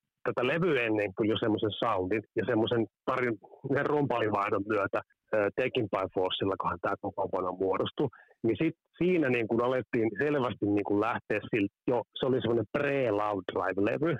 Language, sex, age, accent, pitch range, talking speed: Finnish, male, 30-49, native, 105-140 Hz, 150 wpm